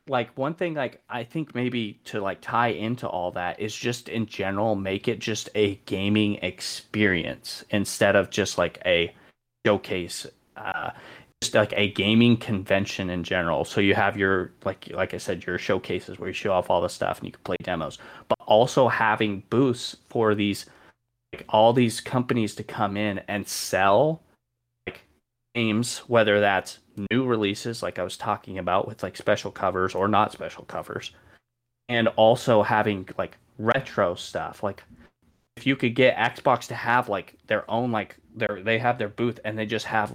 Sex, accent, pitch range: male, American, 100-120 Hz